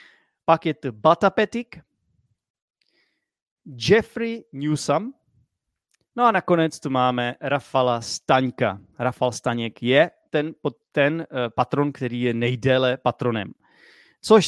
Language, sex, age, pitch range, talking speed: Czech, male, 30-49, 125-150 Hz, 95 wpm